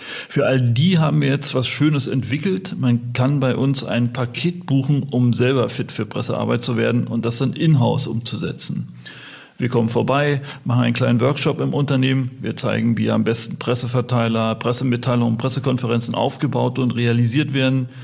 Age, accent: 30-49, German